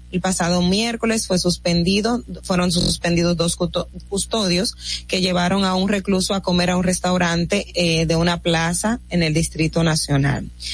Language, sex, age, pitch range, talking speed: Spanish, female, 30-49, 170-210 Hz, 150 wpm